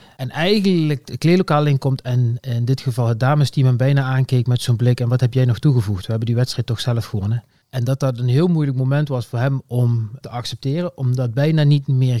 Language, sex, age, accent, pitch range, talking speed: Dutch, male, 30-49, Dutch, 120-140 Hz, 230 wpm